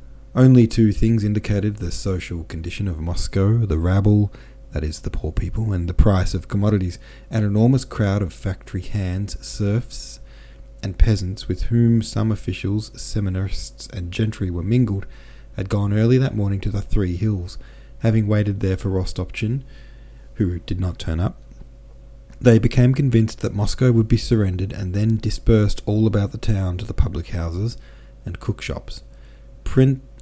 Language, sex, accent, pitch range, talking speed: English, male, Australian, 90-110 Hz, 160 wpm